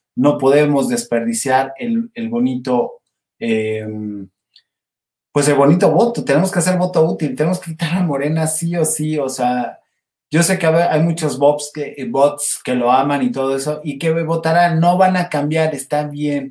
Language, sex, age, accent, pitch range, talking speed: Spanish, male, 30-49, Mexican, 135-180 Hz, 170 wpm